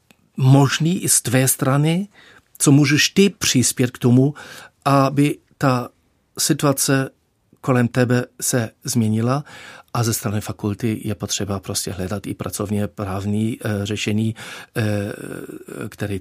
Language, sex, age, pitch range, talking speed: Czech, male, 50-69, 105-135 Hz, 115 wpm